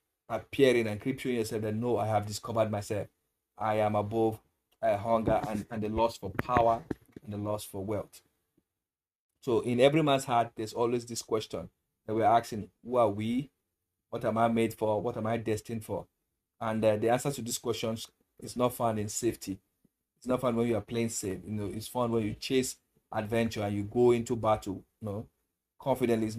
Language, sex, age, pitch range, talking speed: English, male, 30-49, 105-120 Hz, 200 wpm